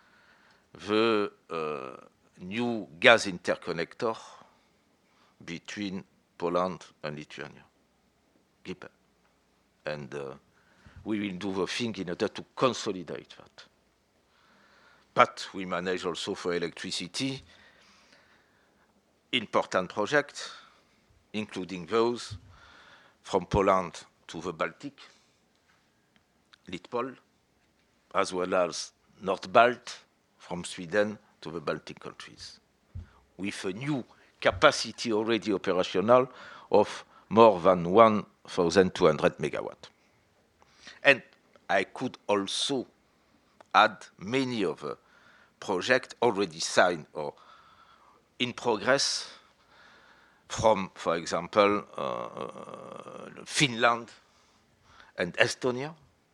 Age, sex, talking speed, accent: 50-69, male, 85 wpm, French